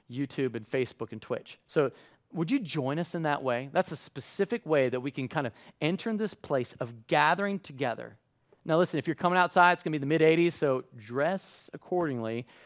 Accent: American